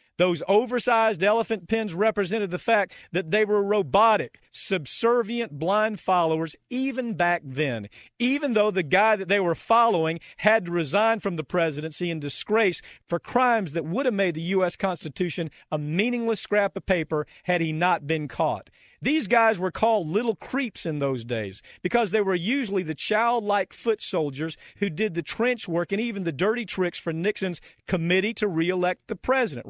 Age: 40-59